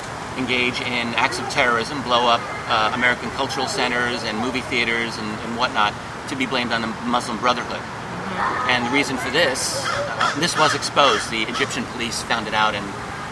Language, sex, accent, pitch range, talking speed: English, male, American, 115-130 Hz, 180 wpm